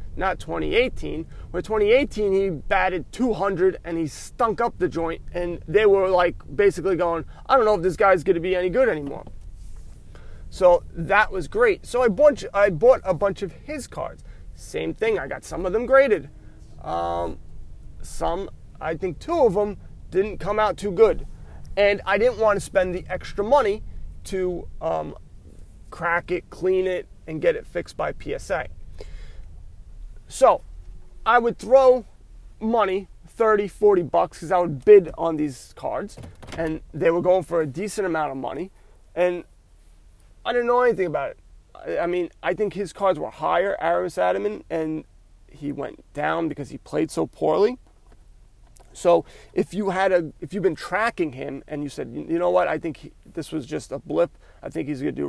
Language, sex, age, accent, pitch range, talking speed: English, male, 30-49, American, 140-205 Hz, 180 wpm